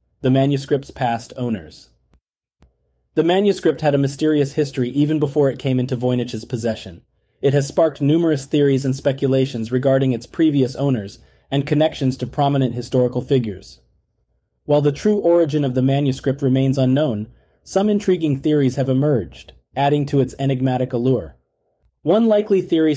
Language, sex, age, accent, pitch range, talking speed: English, male, 30-49, American, 120-150 Hz, 145 wpm